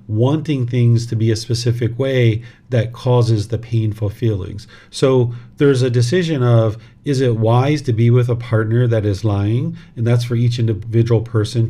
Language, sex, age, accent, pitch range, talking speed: English, male, 40-59, American, 110-125 Hz, 175 wpm